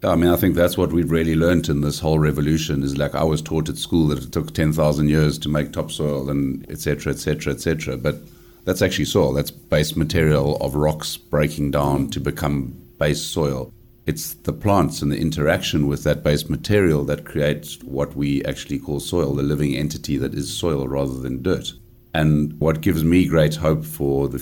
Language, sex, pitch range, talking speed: English, male, 70-80 Hz, 200 wpm